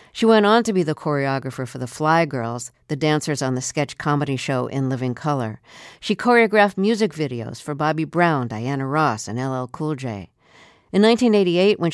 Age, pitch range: 60-79, 130-170 Hz